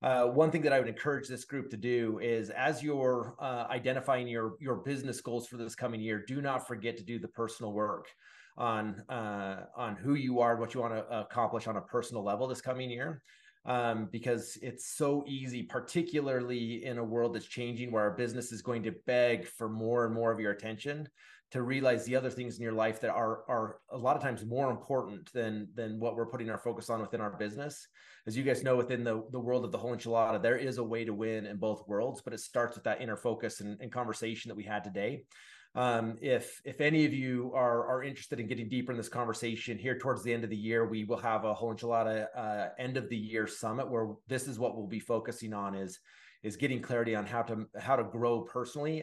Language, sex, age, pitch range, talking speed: English, male, 30-49, 110-125 Hz, 235 wpm